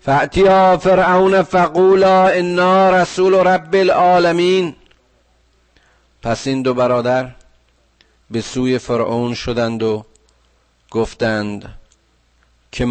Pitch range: 85-140 Hz